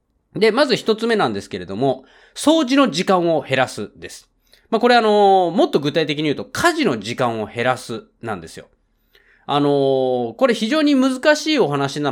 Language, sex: Japanese, male